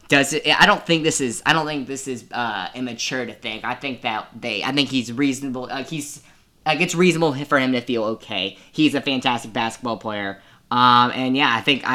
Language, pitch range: English, 120-150 Hz